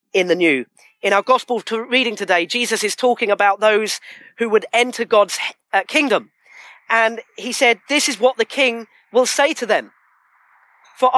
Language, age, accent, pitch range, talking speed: English, 40-59, British, 225-265 Hz, 170 wpm